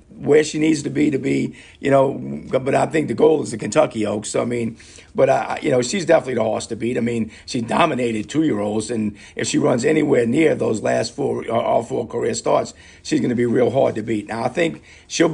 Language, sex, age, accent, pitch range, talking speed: English, male, 50-69, American, 105-155 Hz, 240 wpm